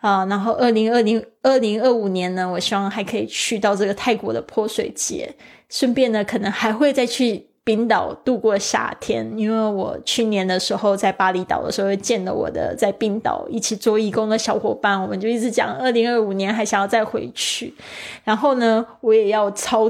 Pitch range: 205-235 Hz